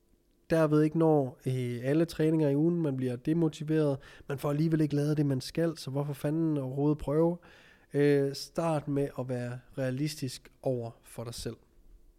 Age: 20-39